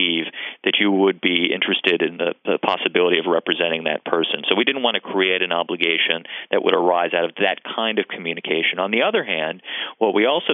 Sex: male